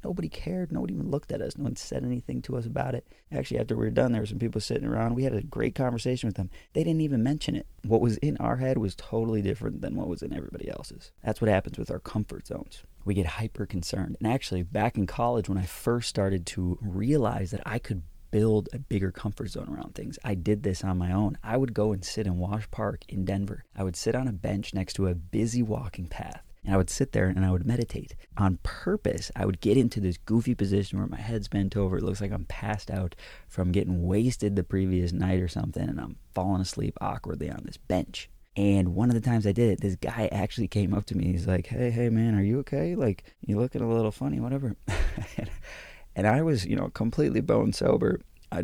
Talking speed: 240 wpm